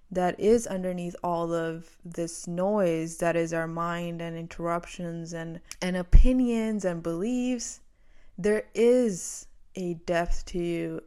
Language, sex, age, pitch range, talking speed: English, female, 20-39, 170-190 Hz, 130 wpm